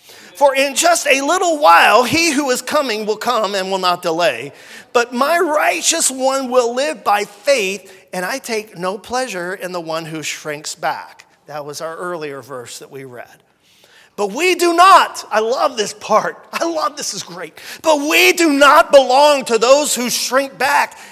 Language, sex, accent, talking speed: English, male, American, 190 wpm